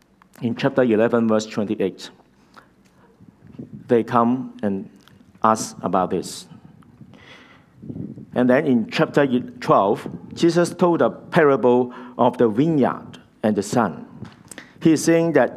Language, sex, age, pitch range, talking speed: English, male, 50-69, 115-140 Hz, 110 wpm